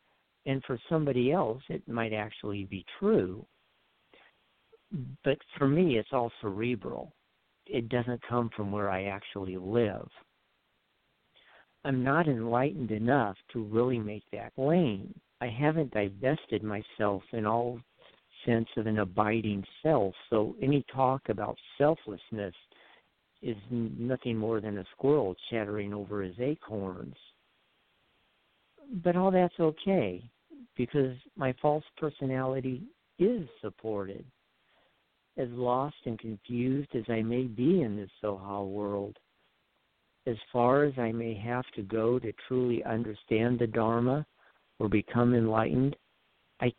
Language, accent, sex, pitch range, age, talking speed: English, American, male, 105-135 Hz, 50-69, 125 wpm